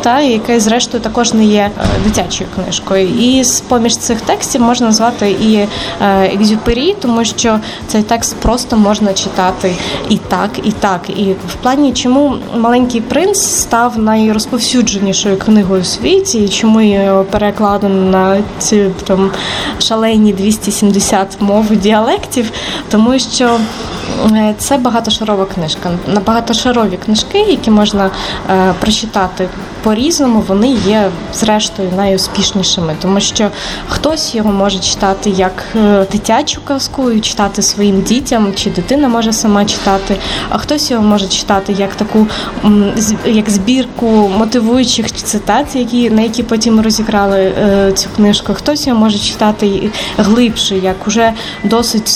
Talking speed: 125 wpm